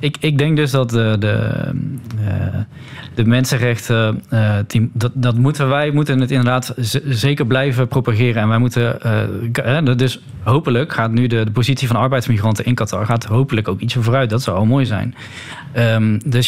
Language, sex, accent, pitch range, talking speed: Dutch, male, Dutch, 115-135 Hz, 170 wpm